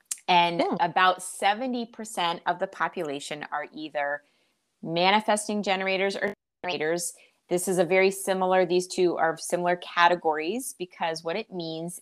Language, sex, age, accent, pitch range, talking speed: English, female, 30-49, American, 160-190 Hz, 130 wpm